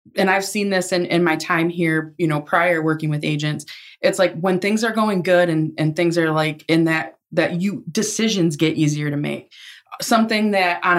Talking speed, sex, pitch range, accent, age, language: 215 wpm, female, 155-175 Hz, American, 20-39, English